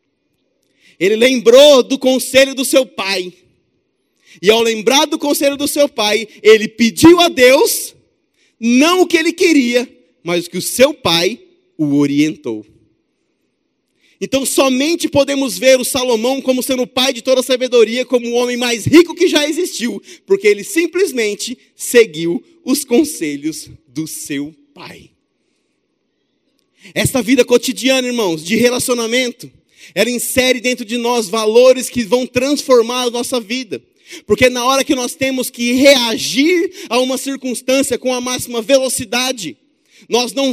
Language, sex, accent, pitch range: Portuguese, male, Brazilian, 225-280 Hz